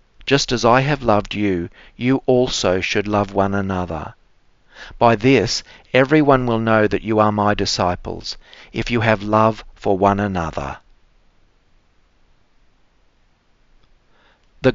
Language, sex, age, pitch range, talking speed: English, male, 50-69, 95-120 Hz, 120 wpm